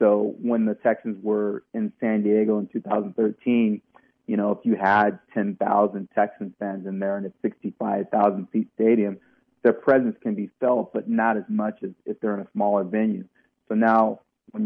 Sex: male